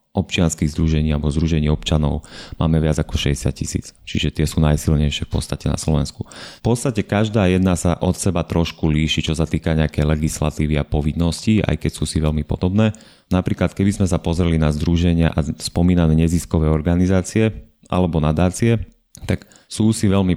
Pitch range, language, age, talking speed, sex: 75-85 Hz, Slovak, 30-49, 170 wpm, male